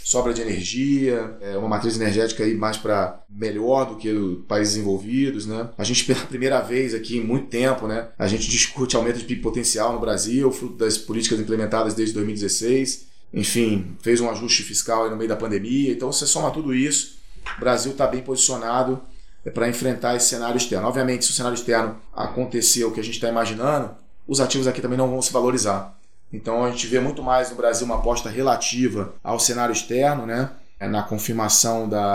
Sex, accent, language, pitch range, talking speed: male, Brazilian, English, 110-125 Hz, 195 wpm